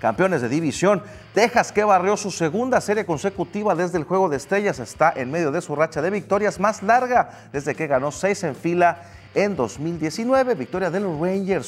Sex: male